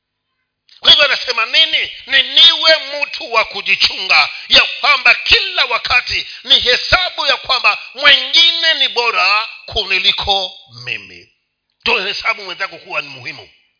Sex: male